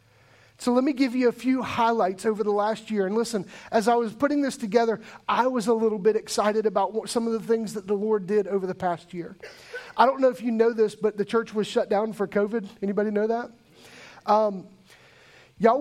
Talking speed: 225 wpm